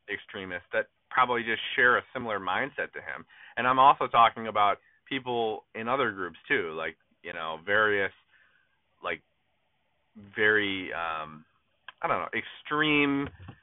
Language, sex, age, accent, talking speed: English, male, 30-49, American, 135 wpm